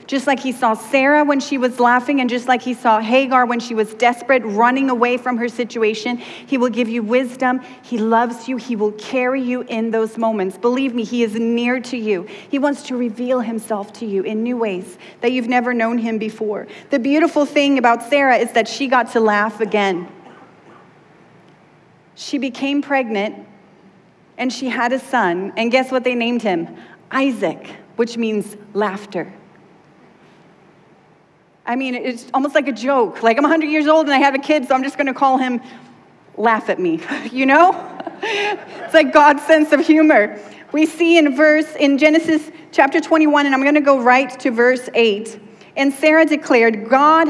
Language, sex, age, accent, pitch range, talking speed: English, female, 30-49, American, 225-275 Hz, 185 wpm